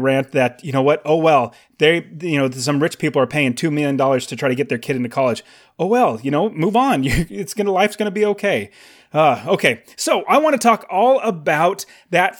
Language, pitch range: English, 140-205 Hz